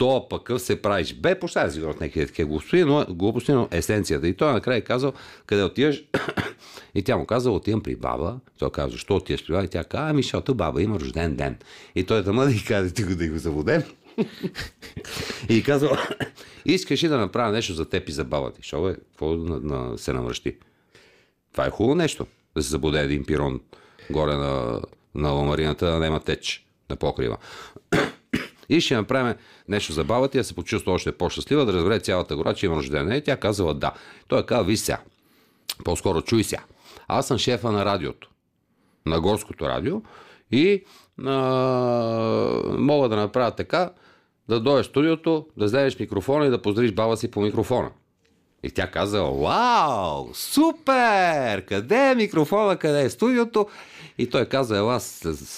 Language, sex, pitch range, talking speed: Bulgarian, male, 85-135 Hz, 175 wpm